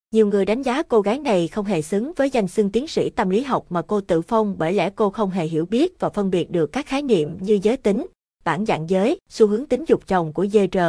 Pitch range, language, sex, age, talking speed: 175-220 Hz, Vietnamese, female, 20-39, 275 wpm